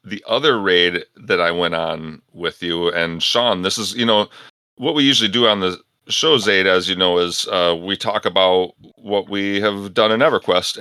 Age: 40-59